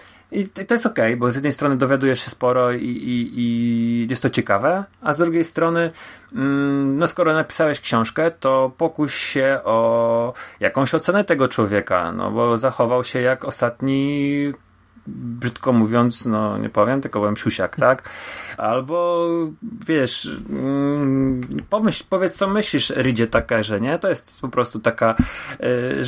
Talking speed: 140 wpm